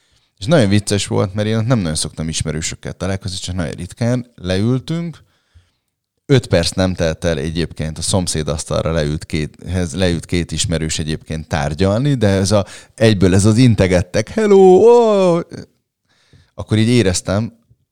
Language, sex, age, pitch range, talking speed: Hungarian, male, 30-49, 85-115 Hz, 145 wpm